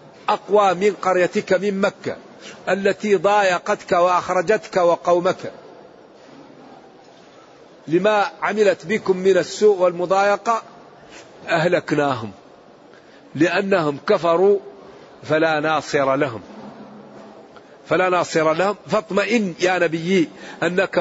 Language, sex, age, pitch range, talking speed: Arabic, male, 50-69, 170-200 Hz, 80 wpm